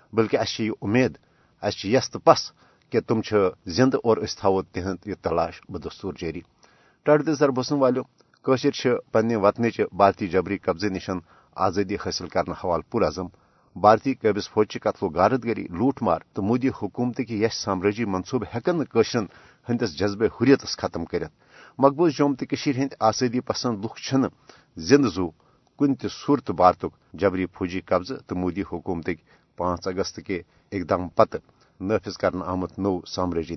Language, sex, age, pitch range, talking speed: Urdu, male, 50-69, 95-125 Hz, 130 wpm